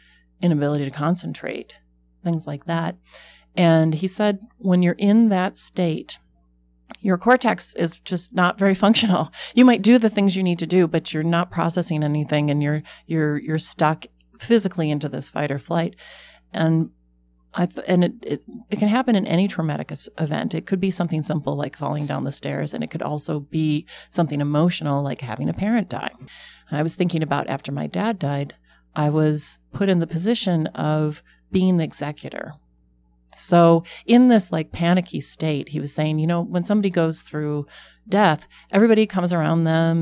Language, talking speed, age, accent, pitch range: English, 180 wpm, 30-49, American, 145-175 Hz